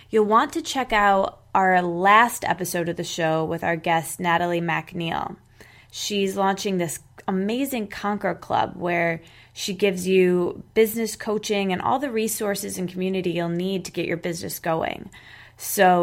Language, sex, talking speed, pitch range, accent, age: English, female, 155 wpm, 170-200 Hz, American, 20-39